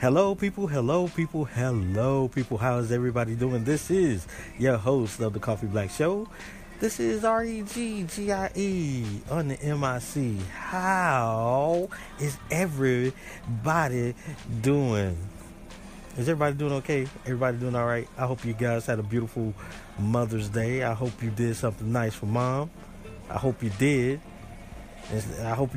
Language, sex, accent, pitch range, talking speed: English, male, American, 110-170 Hz, 155 wpm